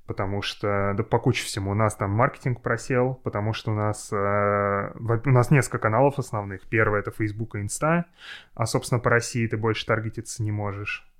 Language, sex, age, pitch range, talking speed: Russian, male, 20-39, 100-120 Hz, 195 wpm